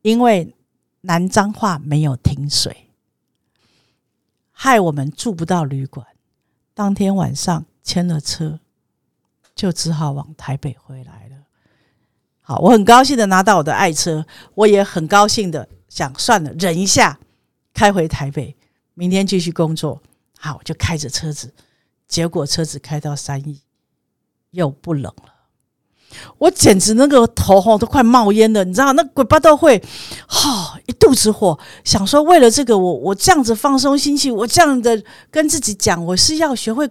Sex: female